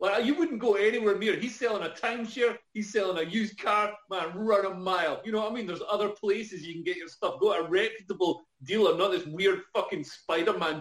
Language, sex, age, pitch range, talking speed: English, male, 30-49, 135-215 Hz, 235 wpm